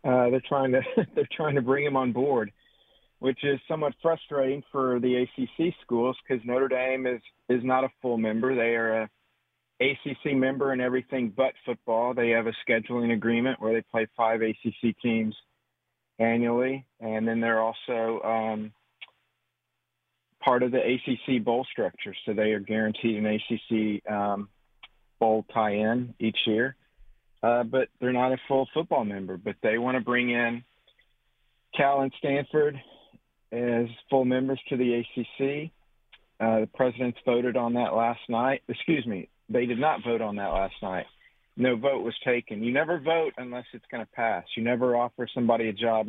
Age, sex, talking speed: 50-69, male, 170 wpm